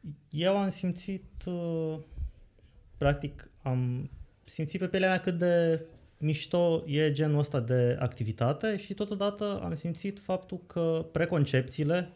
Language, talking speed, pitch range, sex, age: Romanian, 120 wpm, 125-180 Hz, male, 20-39